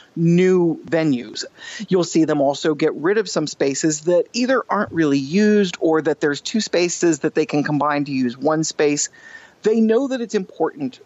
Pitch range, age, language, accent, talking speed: 140-180 Hz, 30-49, English, American, 185 wpm